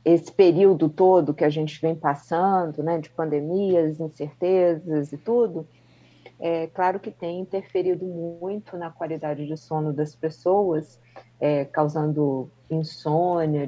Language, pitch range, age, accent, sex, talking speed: Portuguese, 155-195 Hz, 40-59, Brazilian, female, 125 wpm